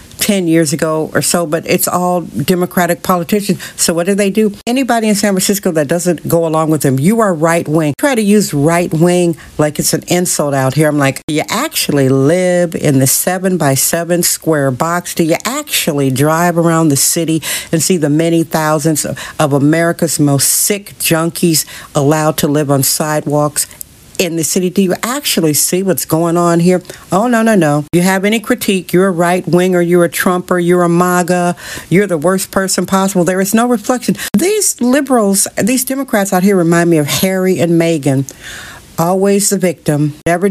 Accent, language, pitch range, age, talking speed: American, English, 155-195 Hz, 60-79, 190 wpm